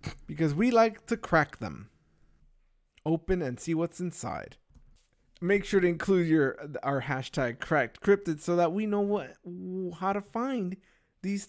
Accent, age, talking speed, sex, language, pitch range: American, 20-39, 150 wpm, male, English, 150-210 Hz